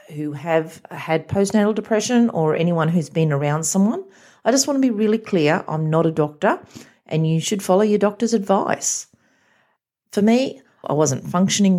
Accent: Australian